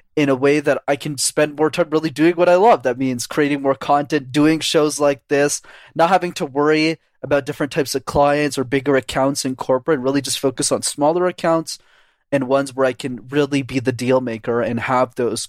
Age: 20-39